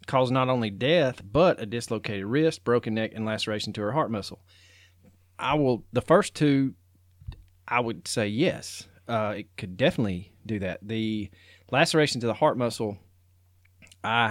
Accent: American